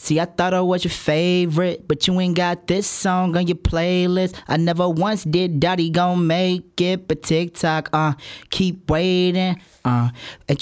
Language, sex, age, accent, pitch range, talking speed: English, male, 20-39, American, 150-175 Hz, 175 wpm